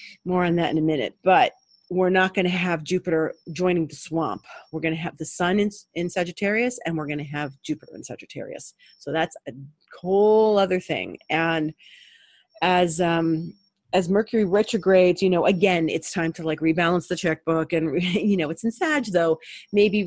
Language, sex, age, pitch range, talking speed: English, female, 30-49, 165-195 Hz, 190 wpm